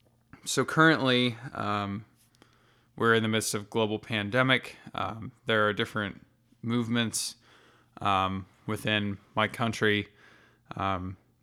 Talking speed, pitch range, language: 105 wpm, 100-120 Hz, English